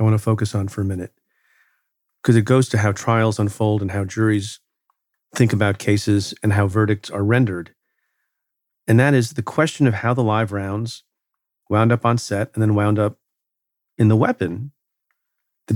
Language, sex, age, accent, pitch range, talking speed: English, male, 40-59, American, 105-125 Hz, 185 wpm